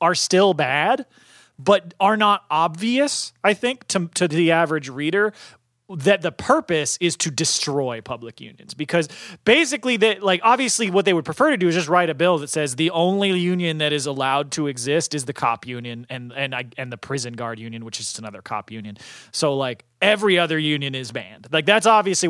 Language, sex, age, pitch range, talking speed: English, male, 30-49, 130-185 Hz, 195 wpm